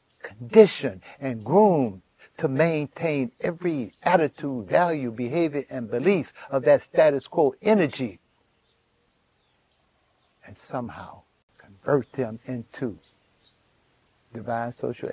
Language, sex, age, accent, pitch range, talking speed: English, male, 60-79, American, 105-150 Hz, 85 wpm